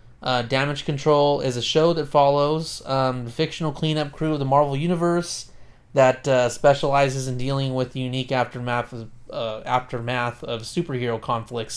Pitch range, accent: 125-145 Hz, American